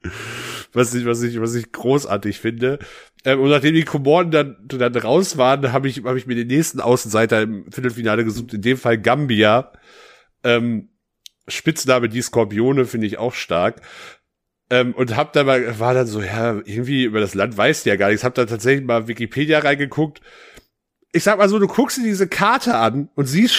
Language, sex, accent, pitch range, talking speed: German, male, German, 120-165 Hz, 190 wpm